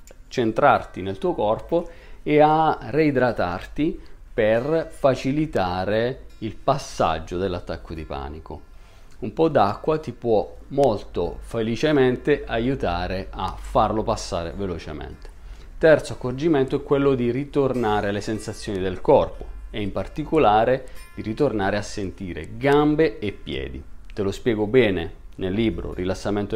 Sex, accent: male, native